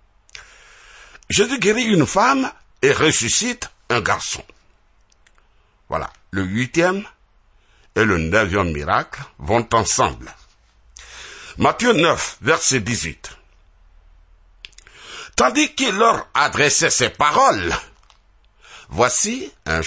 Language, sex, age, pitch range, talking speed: French, male, 60-79, 85-120 Hz, 90 wpm